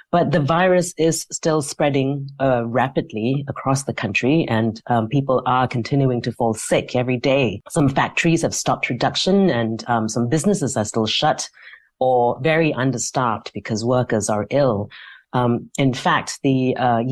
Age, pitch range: 40-59, 115-140 Hz